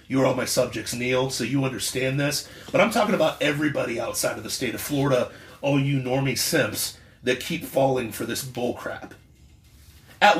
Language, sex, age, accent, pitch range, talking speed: English, male, 40-59, American, 115-190 Hz, 180 wpm